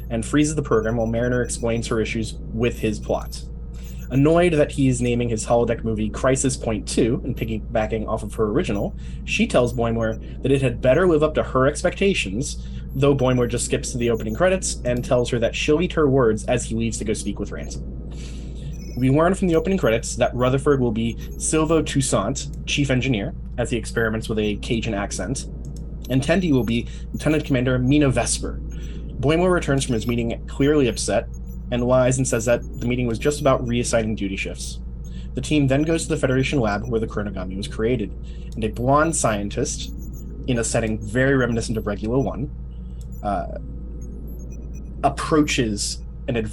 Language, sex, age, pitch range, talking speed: English, male, 20-39, 100-135 Hz, 185 wpm